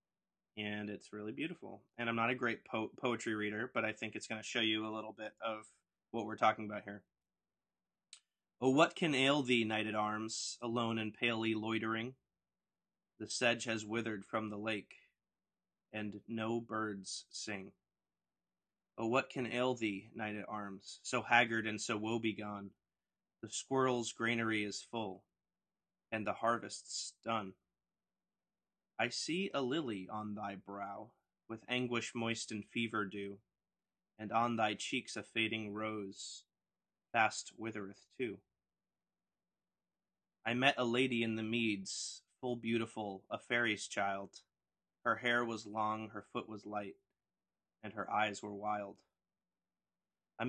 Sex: male